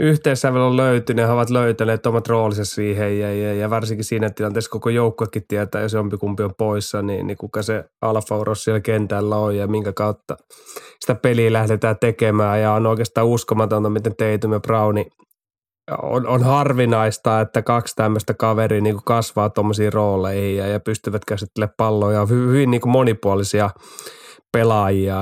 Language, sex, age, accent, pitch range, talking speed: Finnish, male, 20-39, native, 105-115 Hz, 160 wpm